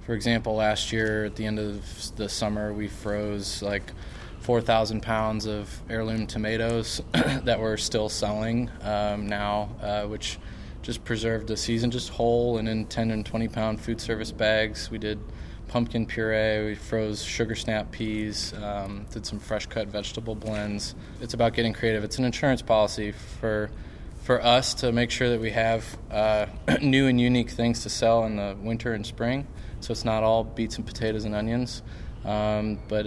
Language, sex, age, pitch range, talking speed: English, male, 20-39, 105-115 Hz, 170 wpm